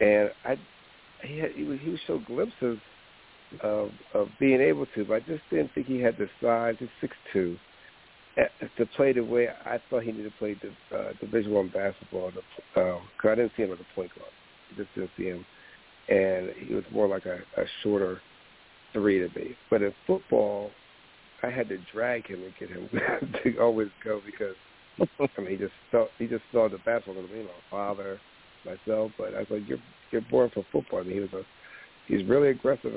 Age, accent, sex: 60-79, American, male